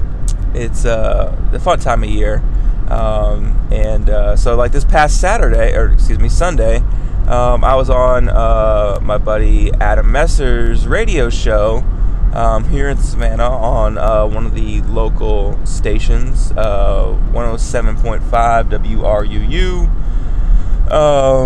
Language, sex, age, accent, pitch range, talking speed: English, male, 20-39, American, 105-120 Hz, 125 wpm